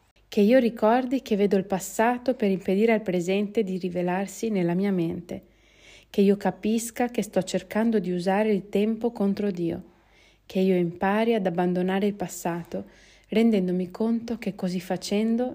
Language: Italian